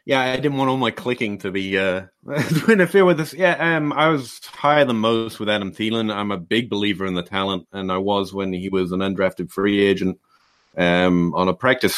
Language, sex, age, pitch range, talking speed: English, male, 30-49, 95-125 Hz, 225 wpm